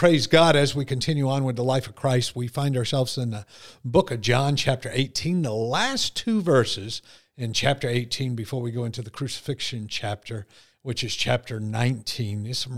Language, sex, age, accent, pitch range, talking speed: English, male, 50-69, American, 115-145 Hz, 195 wpm